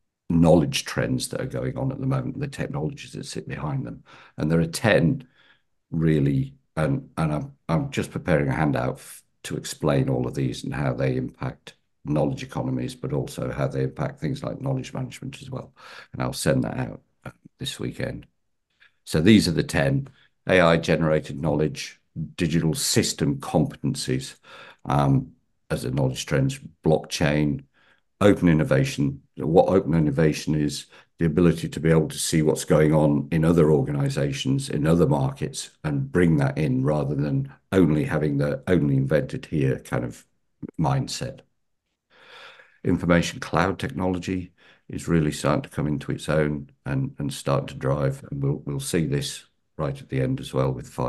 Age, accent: 50-69, British